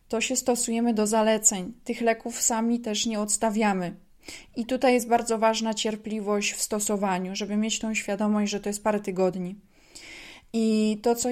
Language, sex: Polish, female